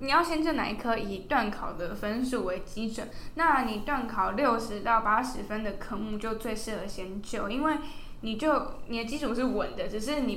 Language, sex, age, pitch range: Chinese, female, 10-29, 210-255 Hz